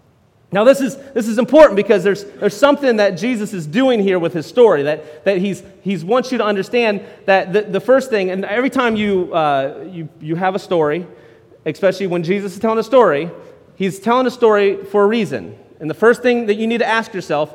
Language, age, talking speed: English, 30-49, 220 wpm